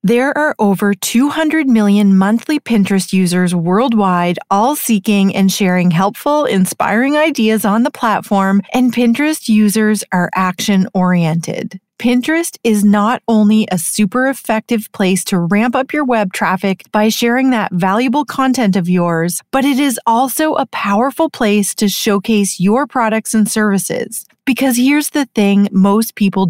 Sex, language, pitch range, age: female, English, 190-240 Hz, 30-49